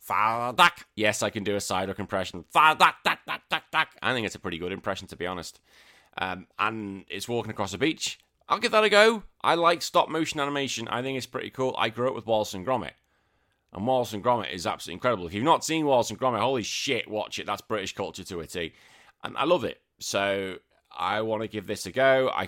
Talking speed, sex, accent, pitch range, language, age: 240 wpm, male, British, 95-130 Hz, English, 30-49